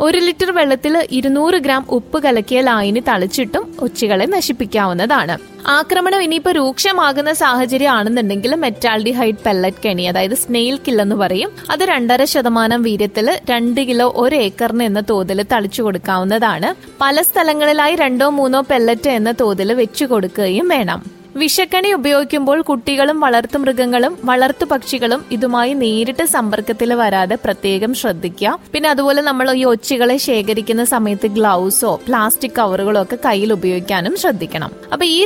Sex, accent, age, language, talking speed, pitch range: female, native, 20-39, Malayalam, 125 wpm, 225-285 Hz